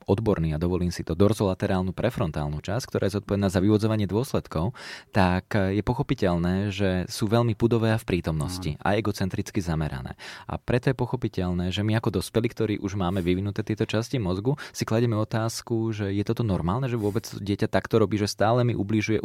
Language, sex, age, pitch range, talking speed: Slovak, male, 20-39, 95-120 Hz, 180 wpm